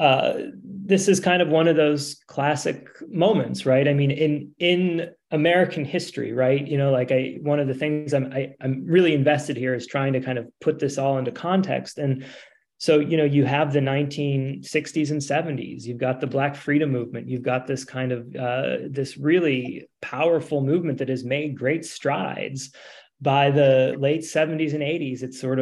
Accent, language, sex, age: American, English, male, 30-49